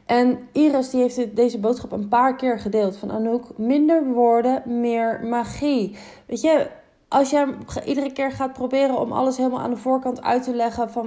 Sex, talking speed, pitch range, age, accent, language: female, 185 wpm, 225-280 Hz, 20-39, Dutch, Dutch